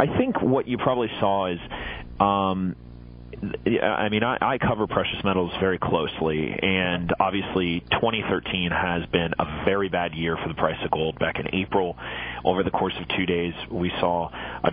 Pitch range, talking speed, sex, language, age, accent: 85-95 Hz, 175 wpm, male, English, 30-49, American